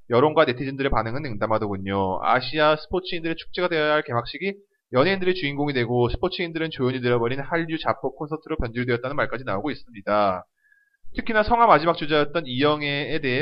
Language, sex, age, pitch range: Korean, male, 30-49, 125-185 Hz